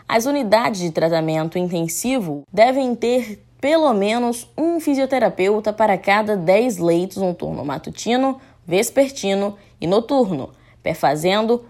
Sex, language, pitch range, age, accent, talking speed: female, Portuguese, 170-255 Hz, 10-29, Brazilian, 115 wpm